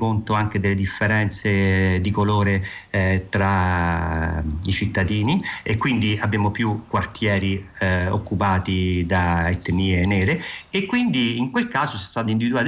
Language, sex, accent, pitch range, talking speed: Italian, male, native, 90-110 Hz, 135 wpm